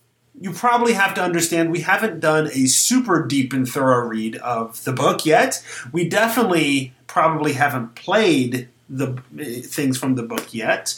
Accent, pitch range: American, 130-165 Hz